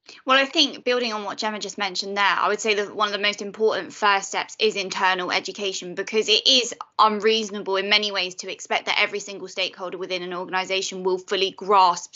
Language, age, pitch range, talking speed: English, 20-39, 190-215 Hz, 210 wpm